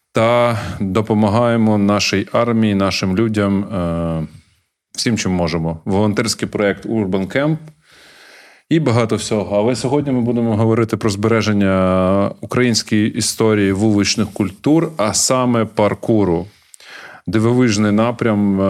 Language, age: Ukrainian, 30-49